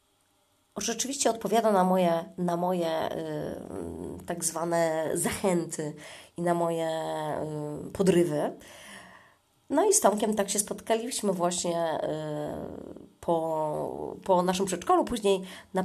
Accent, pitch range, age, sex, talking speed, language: native, 175-230 Hz, 20-39, female, 100 wpm, Polish